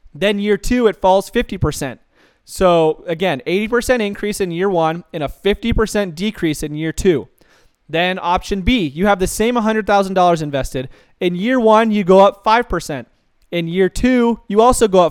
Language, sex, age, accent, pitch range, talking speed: English, male, 20-39, American, 170-220 Hz, 170 wpm